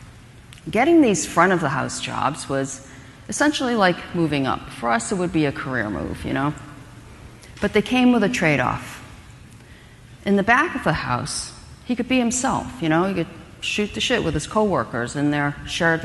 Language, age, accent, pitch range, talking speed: English, 40-59, American, 135-205 Hz, 175 wpm